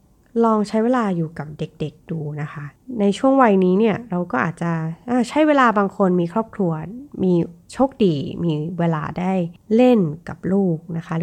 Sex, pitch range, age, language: female, 165-225 Hz, 20-39, Thai